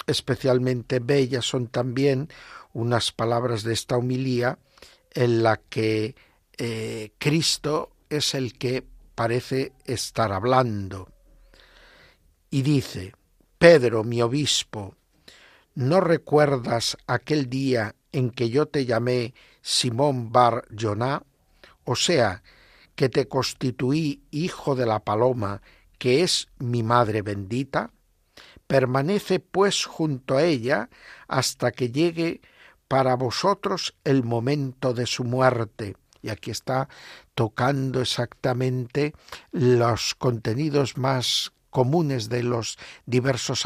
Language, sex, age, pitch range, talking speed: Spanish, male, 60-79, 115-140 Hz, 105 wpm